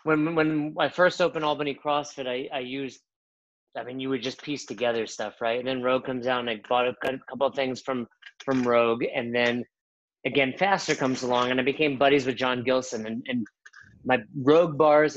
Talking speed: 205 wpm